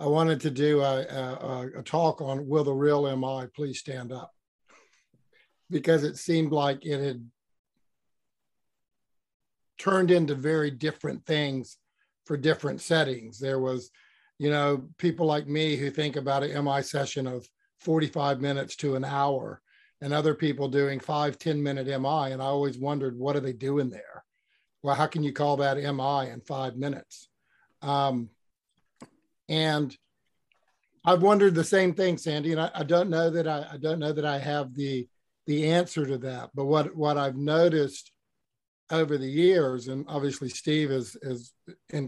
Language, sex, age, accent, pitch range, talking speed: English, male, 50-69, American, 135-155 Hz, 165 wpm